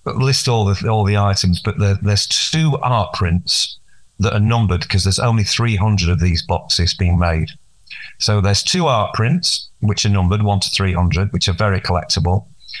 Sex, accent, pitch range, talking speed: male, British, 95-115 Hz, 190 wpm